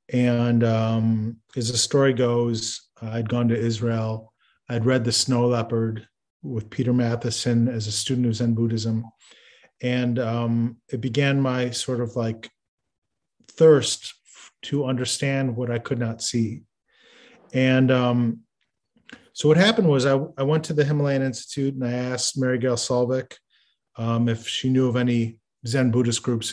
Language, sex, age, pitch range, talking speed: English, male, 30-49, 115-130 Hz, 150 wpm